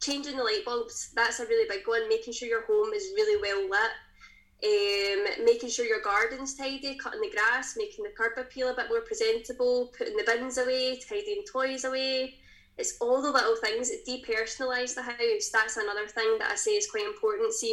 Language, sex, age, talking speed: English, female, 10-29, 205 wpm